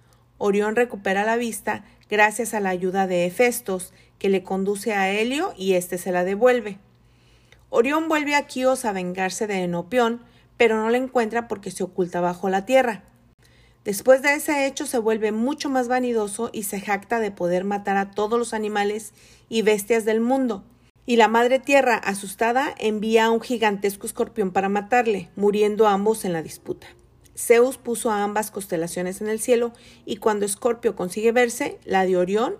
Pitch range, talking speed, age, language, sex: 195-235 Hz, 175 wpm, 40-59, Spanish, female